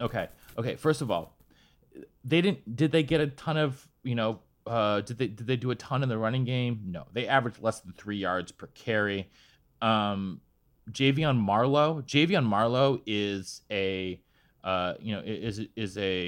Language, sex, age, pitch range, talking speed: English, male, 30-49, 95-130 Hz, 185 wpm